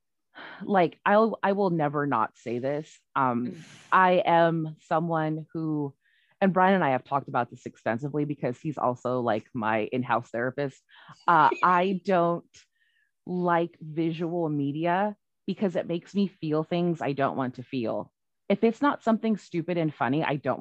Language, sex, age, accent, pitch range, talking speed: English, female, 20-39, American, 140-180 Hz, 155 wpm